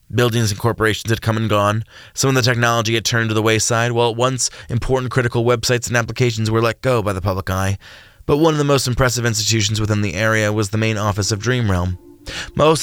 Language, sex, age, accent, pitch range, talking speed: English, male, 20-39, American, 95-115 Hz, 230 wpm